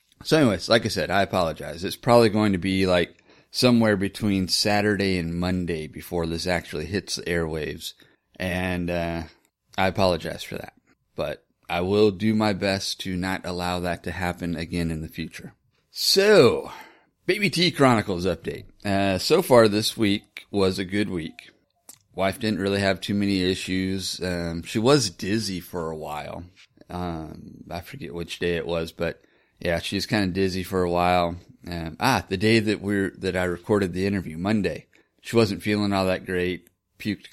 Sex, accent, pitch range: male, American, 90-105 Hz